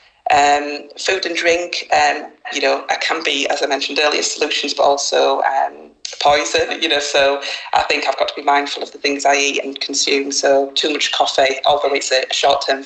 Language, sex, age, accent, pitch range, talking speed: English, female, 30-49, British, 140-155 Hz, 205 wpm